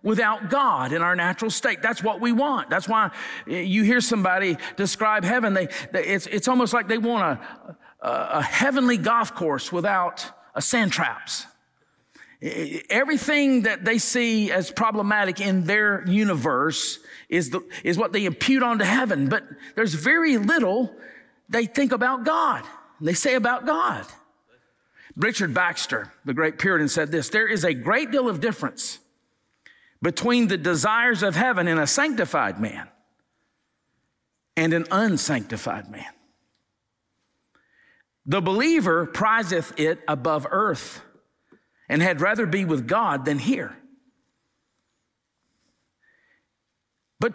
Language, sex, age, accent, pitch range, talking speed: English, male, 50-69, American, 170-245 Hz, 135 wpm